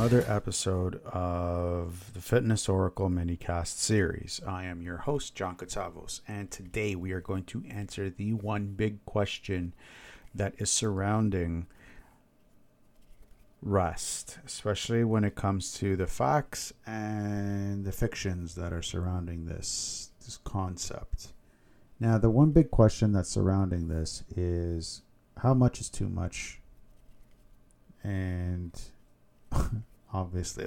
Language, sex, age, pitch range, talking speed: English, male, 50-69, 90-110 Hz, 120 wpm